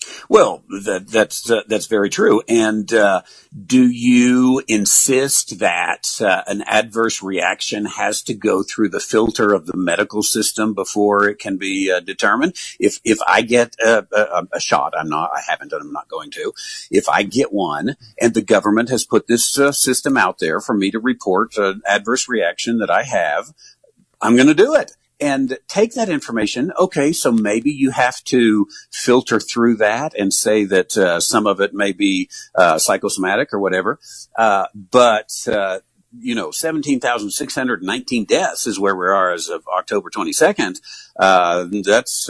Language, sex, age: English, male, 50-69